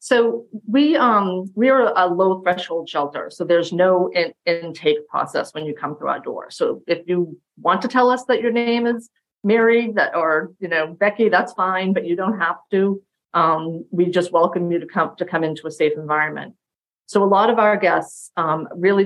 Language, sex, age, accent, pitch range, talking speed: English, female, 40-59, American, 160-195 Hz, 210 wpm